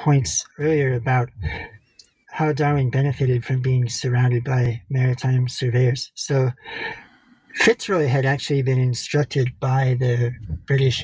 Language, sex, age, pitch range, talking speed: English, male, 60-79, 125-140 Hz, 115 wpm